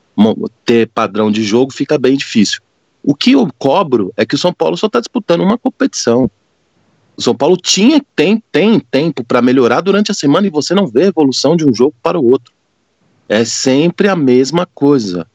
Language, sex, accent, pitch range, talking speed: Portuguese, male, Brazilian, 105-170 Hz, 195 wpm